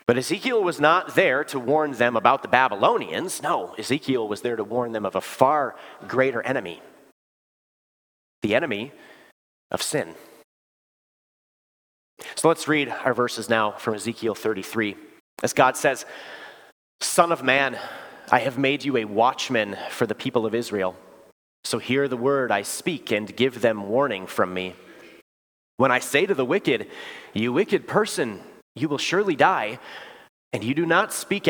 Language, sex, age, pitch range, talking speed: English, male, 30-49, 110-135 Hz, 160 wpm